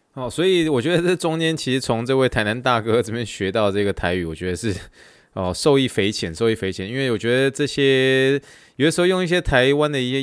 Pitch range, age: 100-150 Hz, 20-39